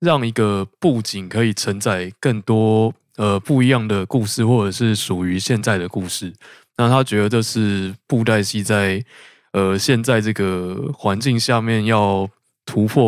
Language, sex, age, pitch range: Chinese, male, 20-39, 100-125 Hz